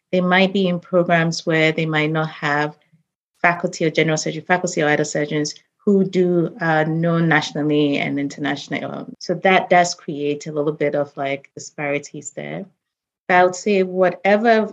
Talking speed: 165 wpm